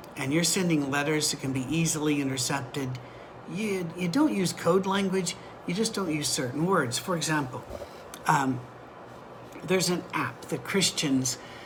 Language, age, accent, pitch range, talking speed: English, 60-79, American, 135-175 Hz, 150 wpm